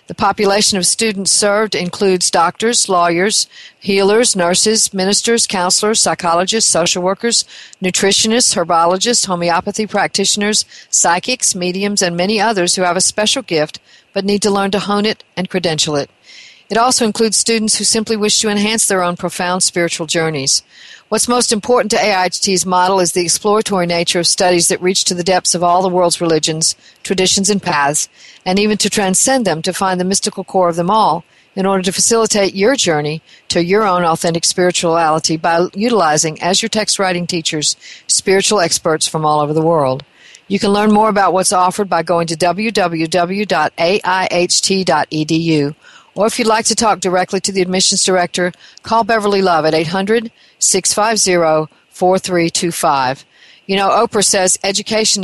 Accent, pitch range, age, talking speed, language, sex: American, 170-205 Hz, 50-69, 160 wpm, English, female